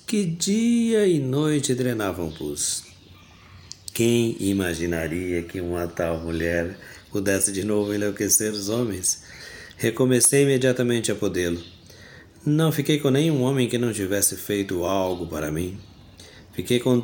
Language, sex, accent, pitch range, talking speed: Portuguese, male, Brazilian, 90-125 Hz, 125 wpm